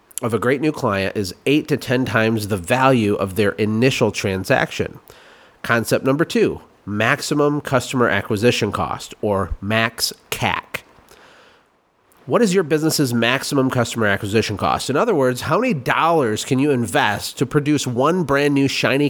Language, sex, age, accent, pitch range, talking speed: English, male, 30-49, American, 110-145 Hz, 155 wpm